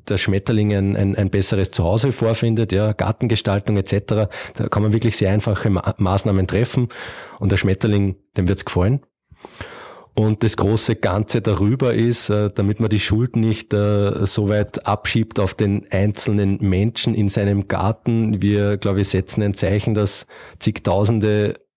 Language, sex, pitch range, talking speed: German, male, 100-110 Hz, 150 wpm